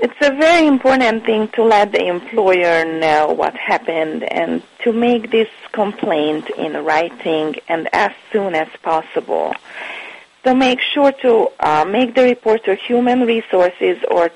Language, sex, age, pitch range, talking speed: English, female, 30-49, 175-260 Hz, 150 wpm